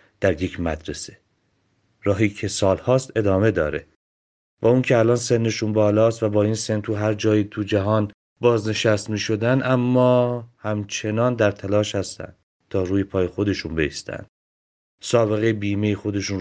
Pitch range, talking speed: 90-115 Hz, 145 wpm